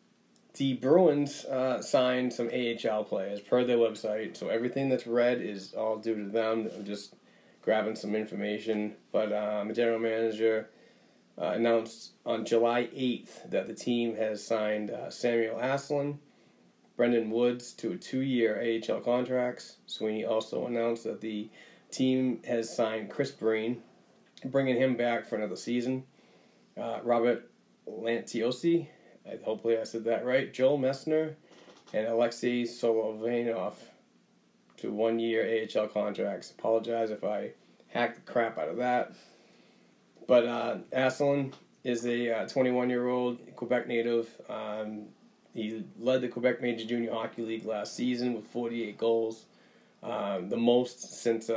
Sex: male